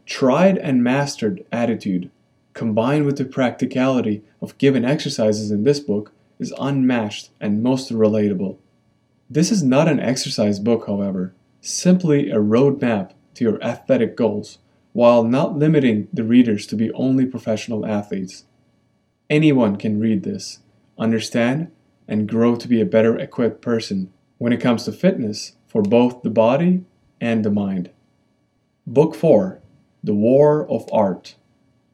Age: 30-49